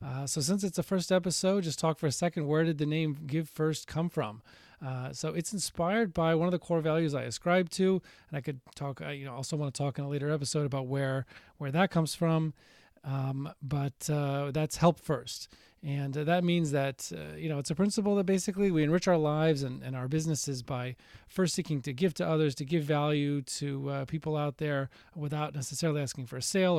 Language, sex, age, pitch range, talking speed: English, male, 30-49, 135-160 Hz, 225 wpm